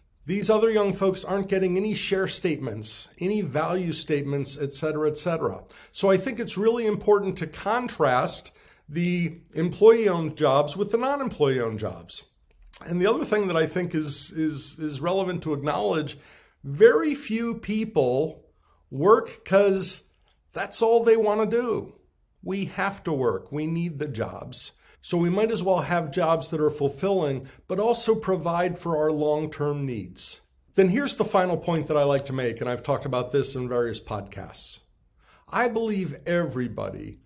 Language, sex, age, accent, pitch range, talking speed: English, male, 50-69, American, 145-200 Hz, 160 wpm